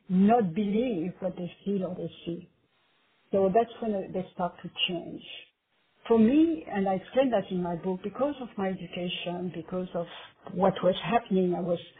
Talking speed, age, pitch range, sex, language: 175 wpm, 50-69, 180-215 Hz, female, English